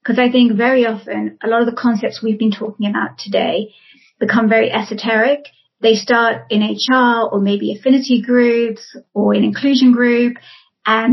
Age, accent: 30-49, British